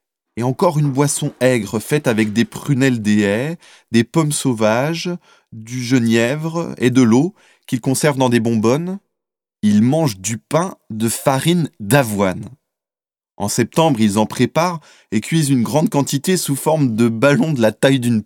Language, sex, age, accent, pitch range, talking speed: French, male, 20-39, French, 110-145 Hz, 160 wpm